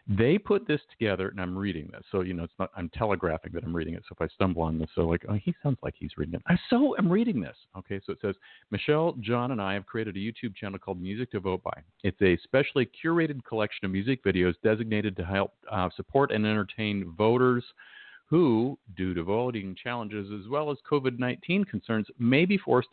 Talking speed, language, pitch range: 225 wpm, English, 95-120 Hz